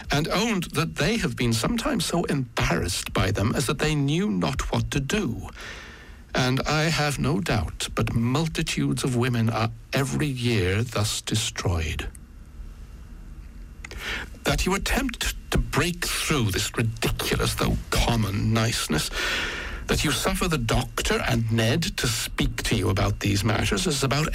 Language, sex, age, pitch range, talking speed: English, male, 60-79, 80-135 Hz, 150 wpm